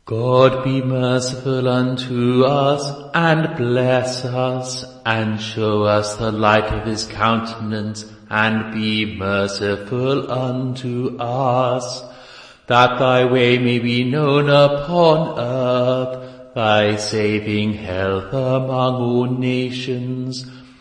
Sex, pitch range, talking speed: male, 110-130 Hz, 100 wpm